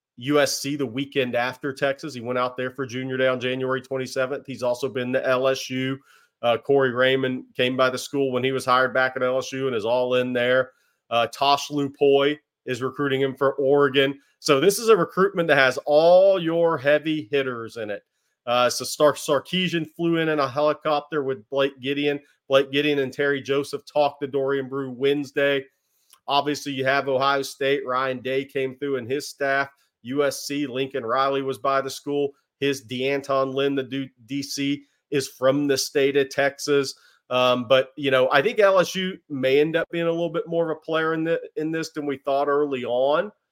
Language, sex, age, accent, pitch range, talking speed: English, male, 30-49, American, 130-145 Hz, 190 wpm